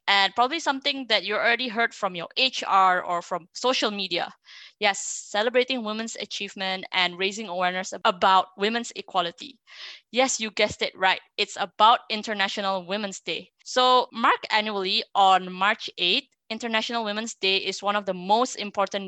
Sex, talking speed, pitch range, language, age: female, 155 wpm, 190-235 Hz, English, 20-39